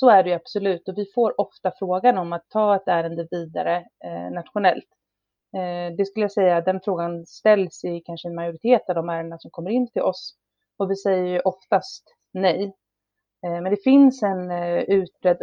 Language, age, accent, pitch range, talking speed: Swedish, 30-49, native, 170-215 Hz, 200 wpm